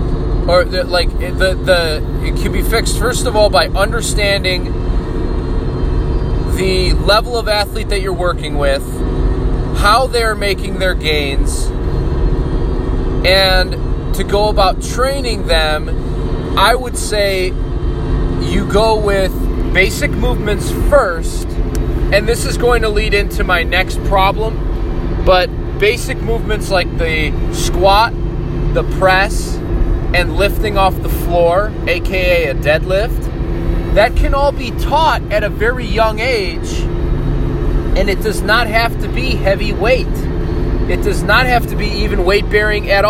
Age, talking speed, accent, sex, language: 20-39, 135 wpm, American, male, English